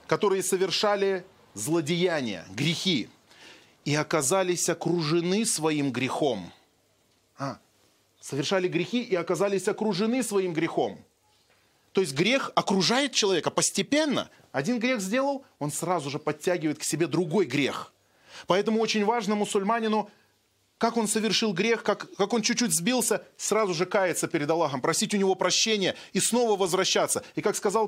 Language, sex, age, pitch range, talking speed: Russian, male, 30-49, 160-210 Hz, 130 wpm